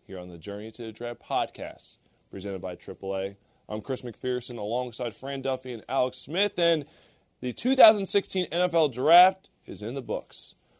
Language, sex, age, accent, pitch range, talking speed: English, male, 20-39, American, 115-165 Hz, 160 wpm